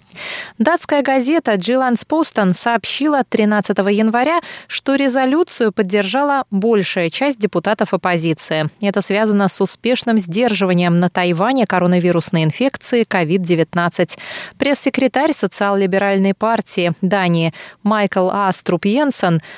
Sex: female